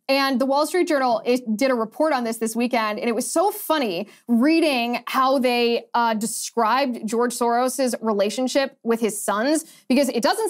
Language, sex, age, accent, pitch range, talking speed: English, female, 20-39, American, 220-295 Hz, 175 wpm